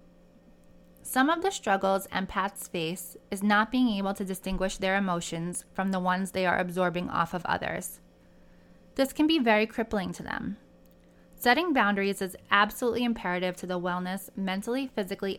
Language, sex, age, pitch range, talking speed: English, female, 20-39, 185-230 Hz, 155 wpm